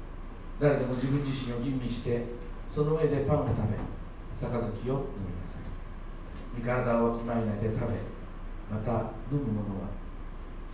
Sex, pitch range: male, 105-135 Hz